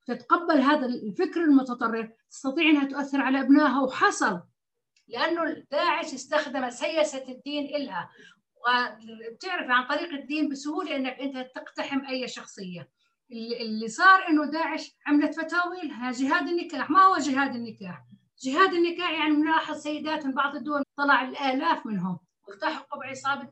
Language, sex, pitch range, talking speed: Arabic, female, 245-295 Hz, 130 wpm